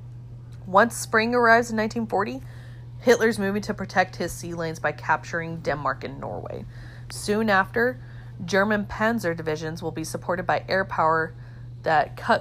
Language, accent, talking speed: English, American, 145 wpm